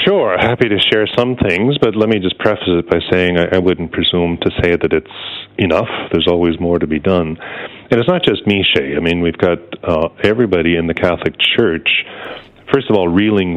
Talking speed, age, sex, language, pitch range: 215 wpm, 40-59, male, English, 85-100 Hz